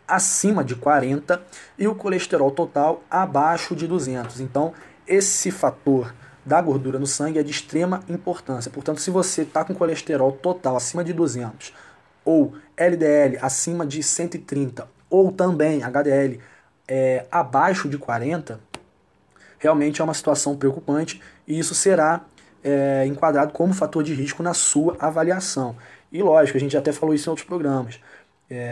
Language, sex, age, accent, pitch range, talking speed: English, male, 20-39, Brazilian, 135-160 Hz, 145 wpm